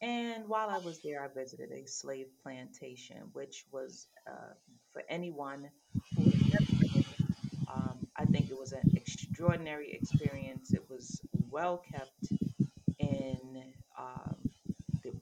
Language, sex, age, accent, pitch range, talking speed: English, female, 30-49, American, 130-165 Hz, 125 wpm